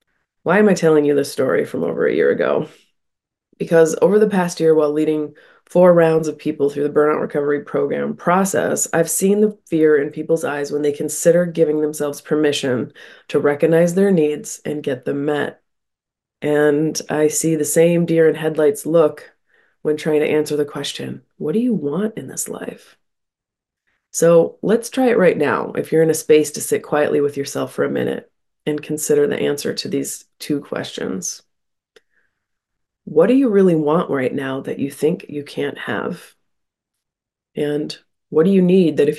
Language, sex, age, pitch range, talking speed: English, female, 20-39, 150-170 Hz, 180 wpm